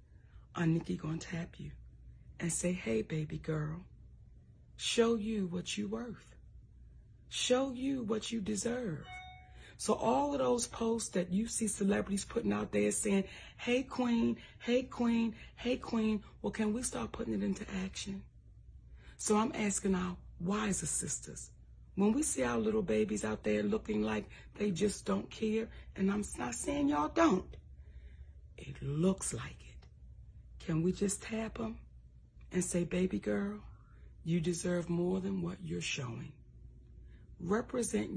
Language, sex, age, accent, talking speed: English, female, 40-59, American, 150 wpm